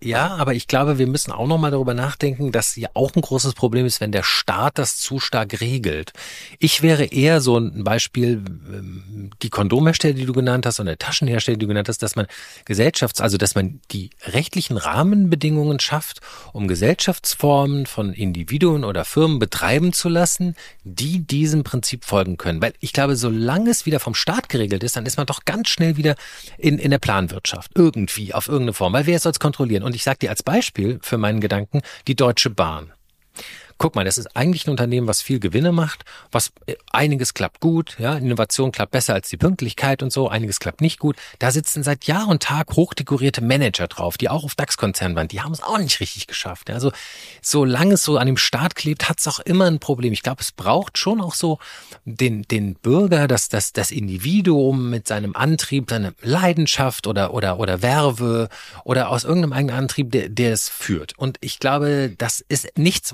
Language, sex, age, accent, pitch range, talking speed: German, male, 40-59, German, 110-150 Hz, 200 wpm